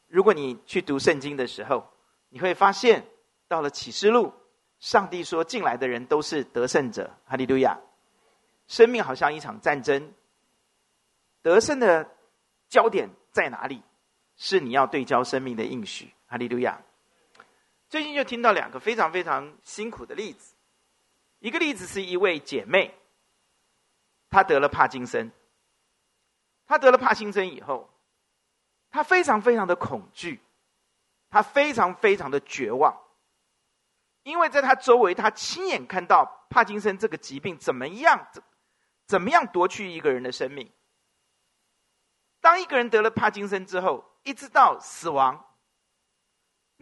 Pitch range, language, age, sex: 175-280 Hz, Chinese, 50-69, male